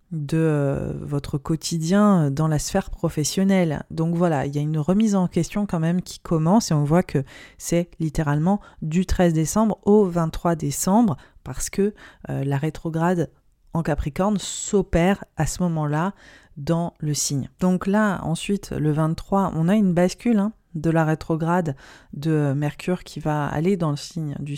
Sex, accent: female, French